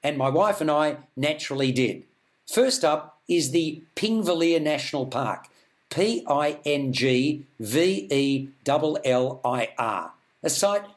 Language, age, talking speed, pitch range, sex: English, 50-69, 95 wpm, 145-180 Hz, male